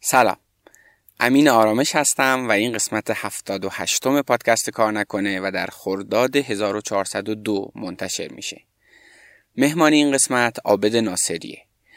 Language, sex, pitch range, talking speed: Persian, male, 105-130 Hz, 120 wpm